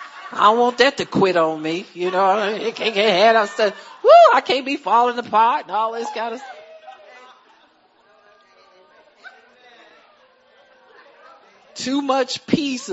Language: English